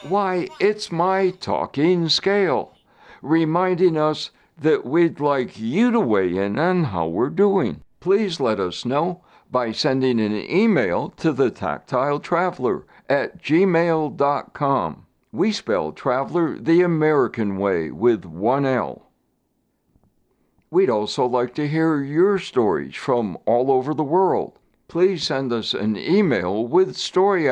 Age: 60-79